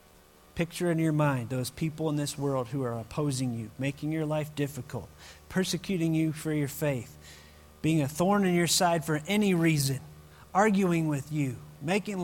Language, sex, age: English, male, 40-59